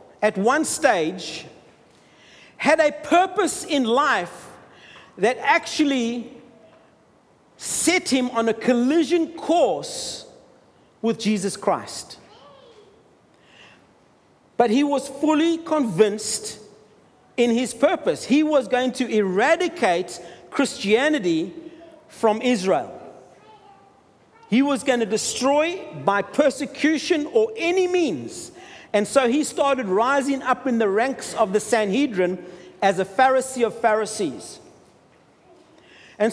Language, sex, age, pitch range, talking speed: English, male, 50-69, 230-305 Hz, 105 wpm